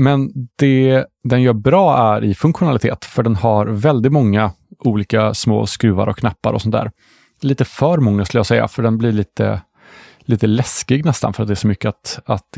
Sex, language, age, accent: male, Swedish, 30-49, Norwegian